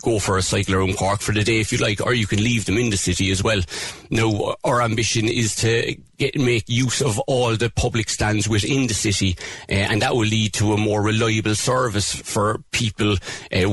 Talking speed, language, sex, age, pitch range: 220 wpm, English, male, 30-49, 100-115 Hz